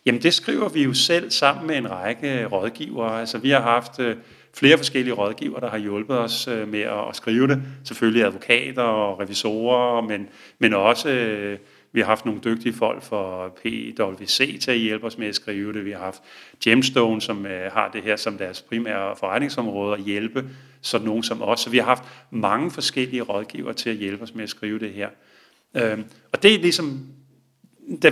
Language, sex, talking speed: Danish, male, 200 wpm